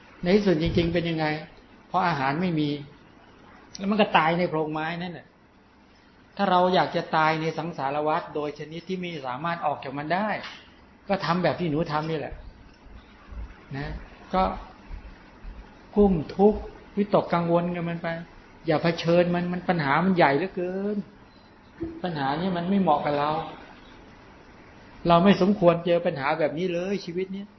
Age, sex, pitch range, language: 60-79, male, 160-190 Hz, English